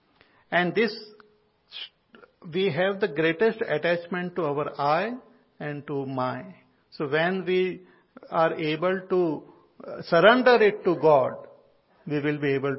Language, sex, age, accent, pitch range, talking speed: English, male, 50-69, Indian, 135-170 Hz, 125 wpm